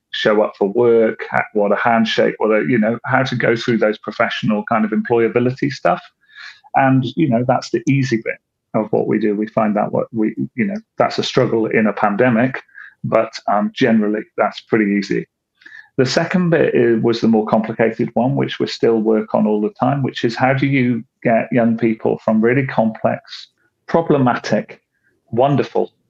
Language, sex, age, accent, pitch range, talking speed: English, male, 40-59, British, 105-125 Hz, 185 wpm